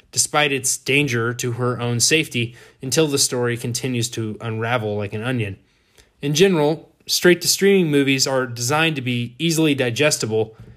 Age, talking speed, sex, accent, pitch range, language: 20-39, 145 wpm, male, American, 115-145 Hz, English